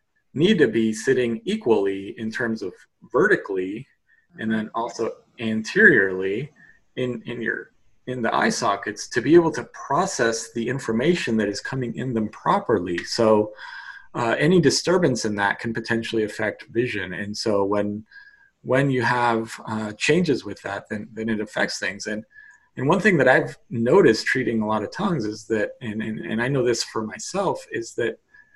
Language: English